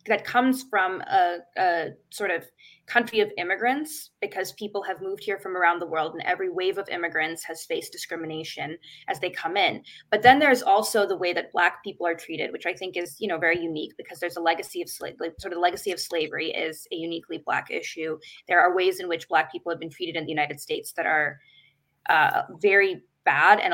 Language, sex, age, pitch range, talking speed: English, female, 20-39, 170-260 Hz, 220 wpm